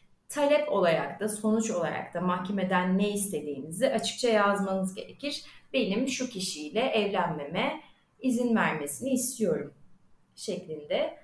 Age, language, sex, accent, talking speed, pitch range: 30-49, Turkish, female, native, 105 wpm, 195-260 Hz